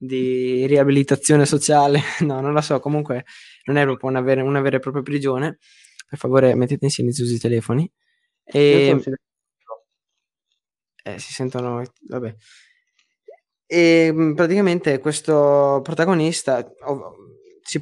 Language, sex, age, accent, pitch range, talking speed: Italian, male, 20-39, native, 130-150 Hz, 120 wpm